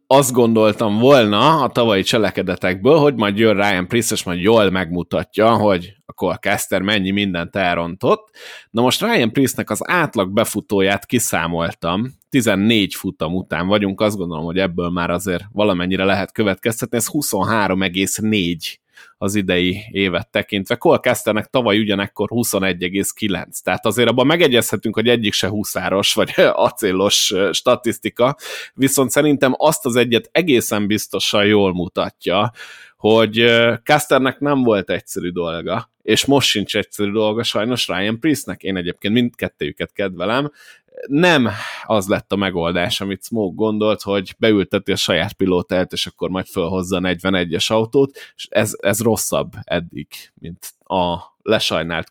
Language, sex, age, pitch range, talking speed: Hungarian, male, 20-39, 95-115 Hz, 135 wpm